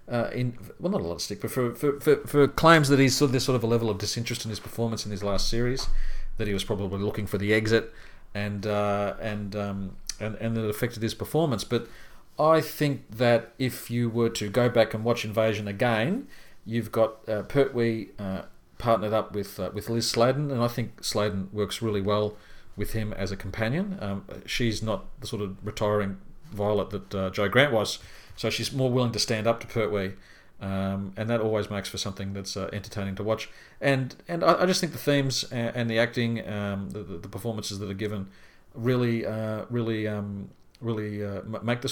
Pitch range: 100-120 Hz